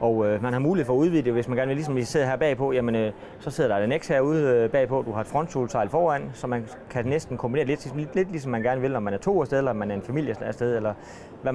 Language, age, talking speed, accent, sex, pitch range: Danish, 30-49, 310 wpm, native, male, 110-140 Hz